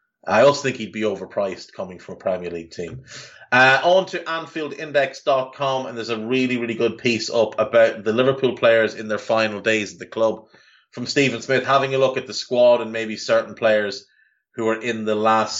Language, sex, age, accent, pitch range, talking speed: English, male, 30-49, Irish, 110-135 Hz, 205 wpm